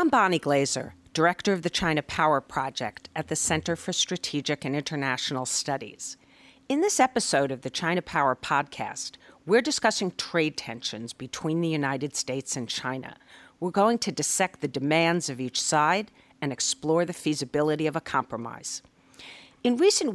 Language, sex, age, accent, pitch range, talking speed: English, female, 50-69, American, 140-180 Hz, 160 wpm